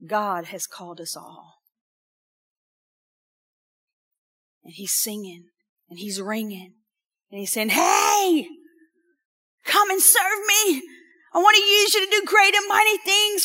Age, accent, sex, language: 40-59, American, female, English